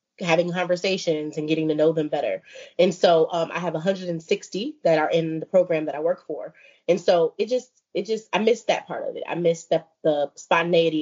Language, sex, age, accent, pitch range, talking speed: English, female, 20-39, American, 155-220 Hz, 220 wpm